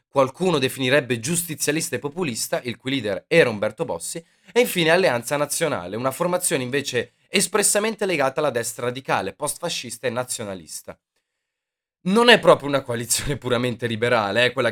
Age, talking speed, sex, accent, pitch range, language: 20-39, 145 wpm, male, native, 110-165 Hz, Italian